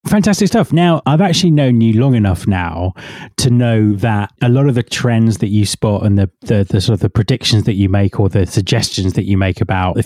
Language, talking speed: English, 240 wpm